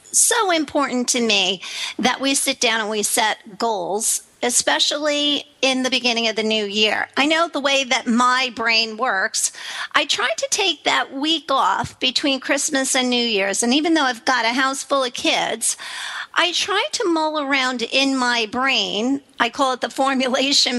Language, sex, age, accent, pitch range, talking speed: English, female, 50-69, American, 235-300 Hz, 180 wpm